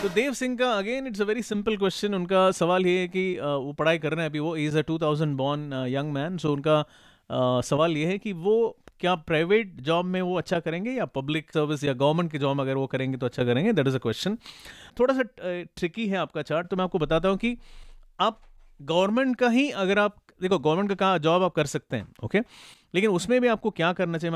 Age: 30-49